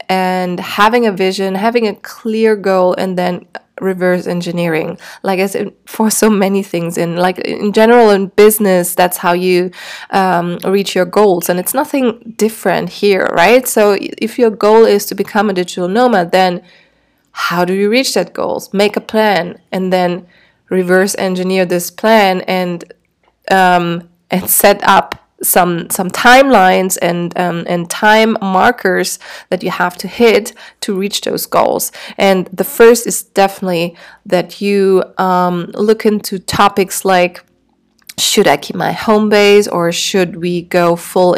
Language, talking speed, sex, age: English, 155 wpm, female, 20-39